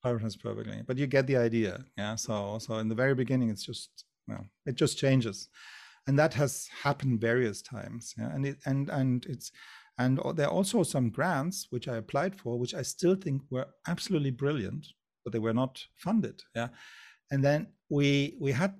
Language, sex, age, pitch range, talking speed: English, male, 50-69, 125-165 Hz, 190 wpm